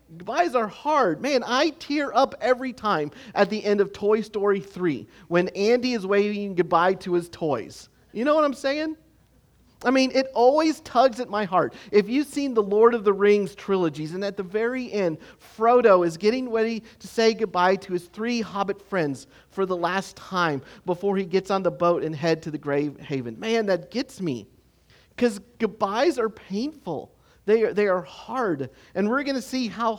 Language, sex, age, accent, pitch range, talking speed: English, male, 40-59, American, 160-230 Hz, 190 wpm